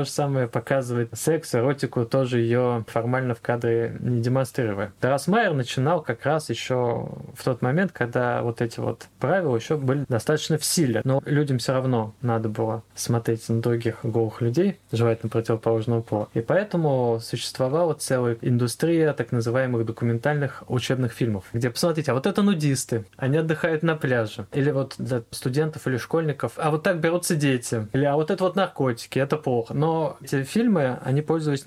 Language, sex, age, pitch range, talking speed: Russian, male, 20-39, 120-155 Hz, 170 wpm